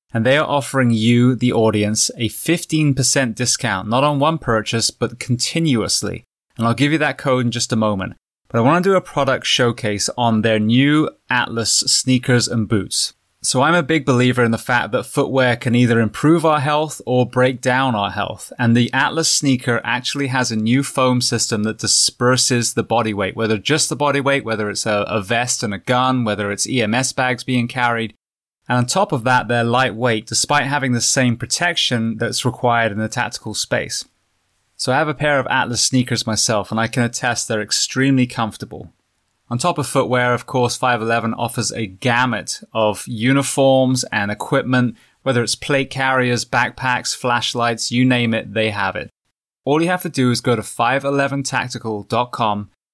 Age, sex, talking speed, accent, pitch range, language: 20-39, male, 185 wpm, British, 115-135 Hz, English